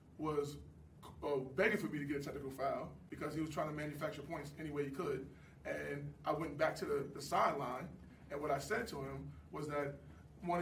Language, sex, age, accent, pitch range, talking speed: English, male, 20-39, American, 140-155 Hz, 215 wpm